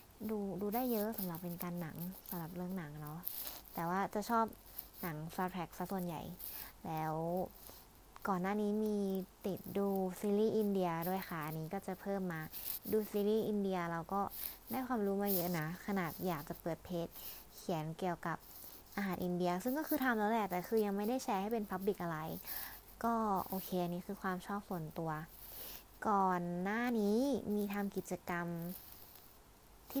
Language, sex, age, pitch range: Thai, female, 20-39, 175-215 Hz